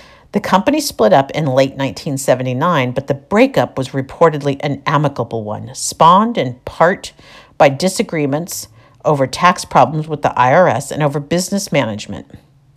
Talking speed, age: 140 wpm, 50-69